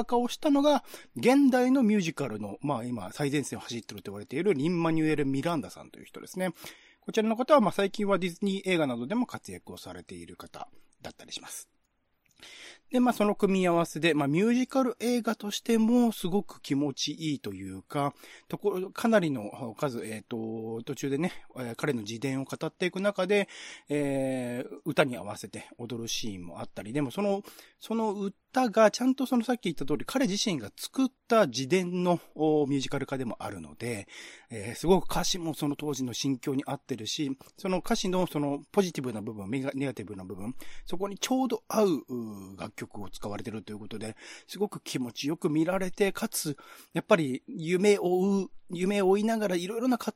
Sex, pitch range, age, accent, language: male, 125-205 Hz, 40-59, native, Japanese